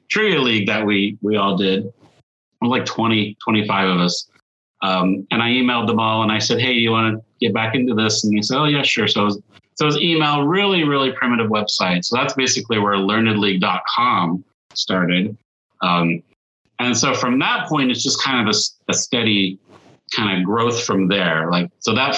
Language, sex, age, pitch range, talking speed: English, male, 30-49, 100-130 Hz, 205 wpm